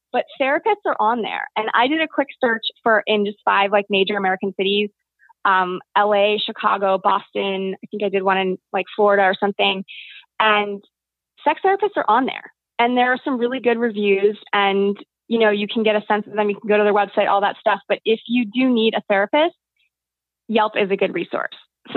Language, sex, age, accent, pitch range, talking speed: English, female, 20-39, American, 200-240 Hz, 215 wpm